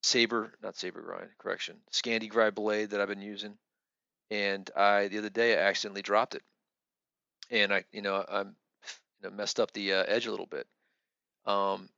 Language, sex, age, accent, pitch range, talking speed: English, male, 40-59, American, 100-115 Hz, 175 wpm